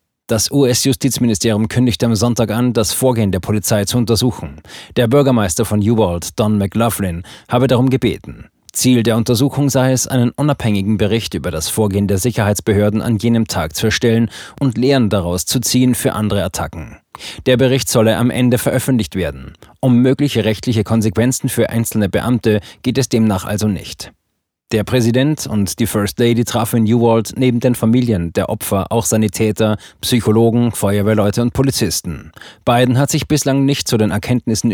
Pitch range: 105-125 Hz